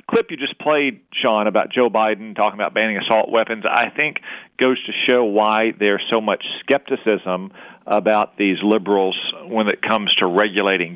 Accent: American